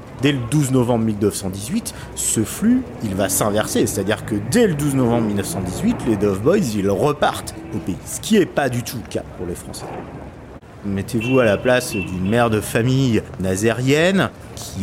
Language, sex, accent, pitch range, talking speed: French, male, French, 105-140 Hz, 180 wpm